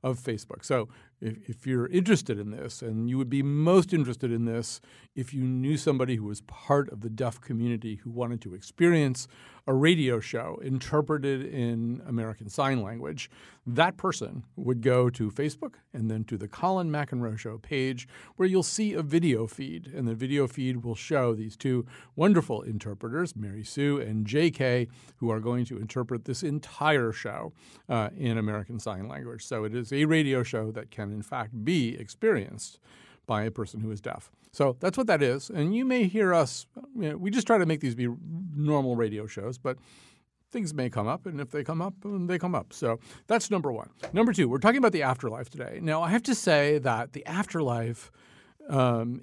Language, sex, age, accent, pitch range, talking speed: English, male, 50-69, American, 115-155 Hz, 195 wpm